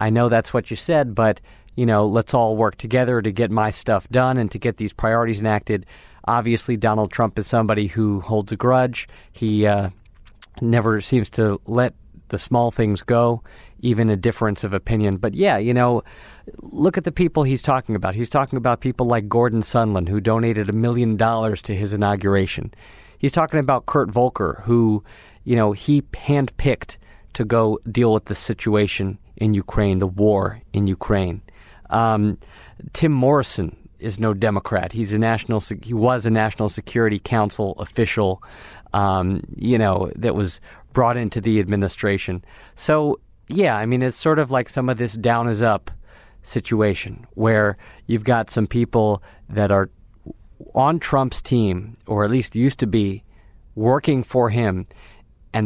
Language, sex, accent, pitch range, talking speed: English, male, American, 105-120 Hz, 170 wpm